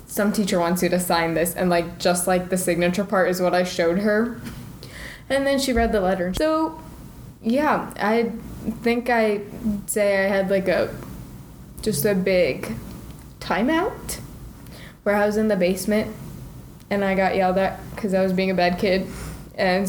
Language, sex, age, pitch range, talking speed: English, female, 20-39, 180-220 Hz, 175 wpm